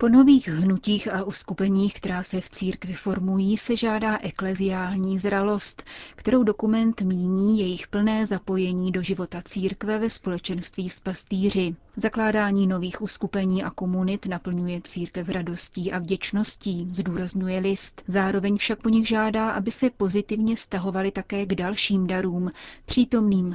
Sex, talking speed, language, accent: female, 135 wpm, Czech, native